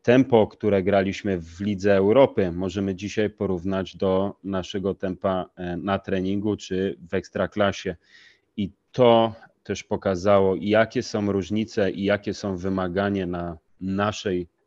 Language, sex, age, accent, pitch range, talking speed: Polish, male, 30-49, native, 95-110 Hz, 125 wpm